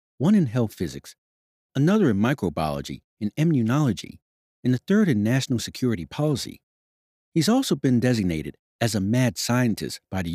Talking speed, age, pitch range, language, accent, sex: 150 wpm, 60-79, 95-150 Hz, English, American, male